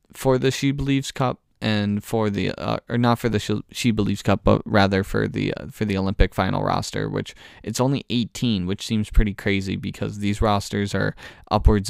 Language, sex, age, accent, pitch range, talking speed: English, male, 10-29, American, 95-115 Hz, 195 wpm